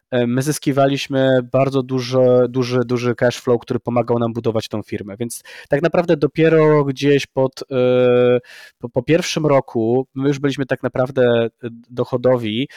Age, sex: 20-39, male